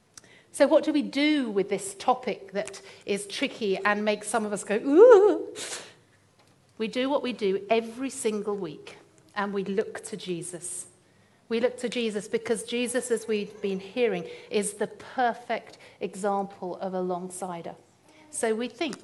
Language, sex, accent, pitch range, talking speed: English, female, British, 190-240 Hz, 160 wpm